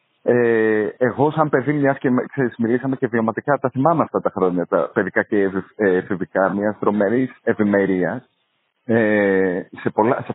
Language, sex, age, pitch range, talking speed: Greek, male, 30-49, 110-160 Hz, 130 wpm